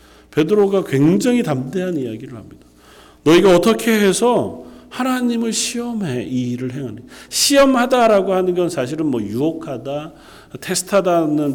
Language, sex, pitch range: Korean, male, 120-200 Hz